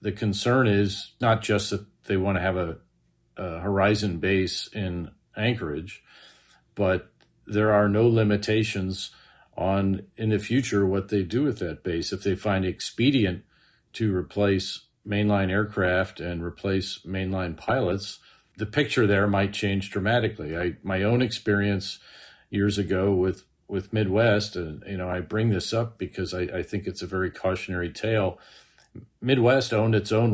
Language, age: English, 50-69